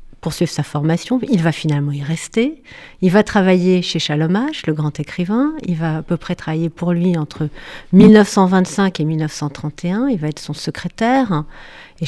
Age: 40-59